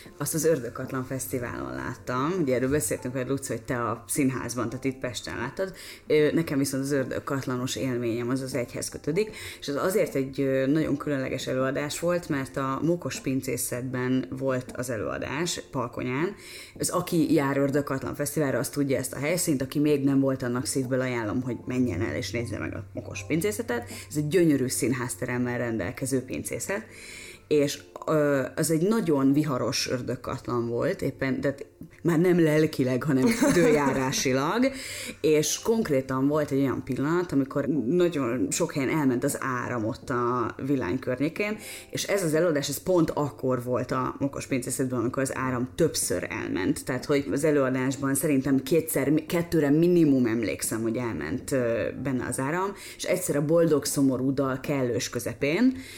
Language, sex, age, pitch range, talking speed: Hungarian, female, 30-49, 125-150 Hz, 155 wpm